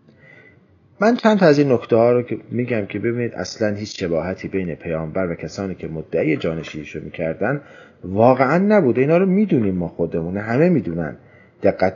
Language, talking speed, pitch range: Persian, 160 wpm, 85-140 Hz